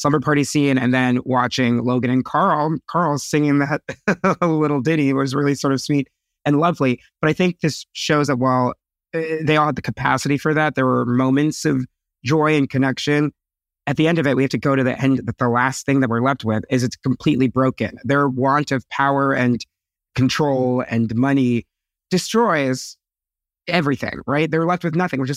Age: 30-49